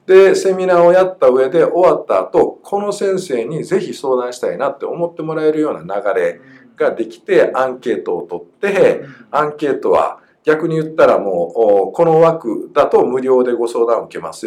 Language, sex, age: Japanese, male, 50-69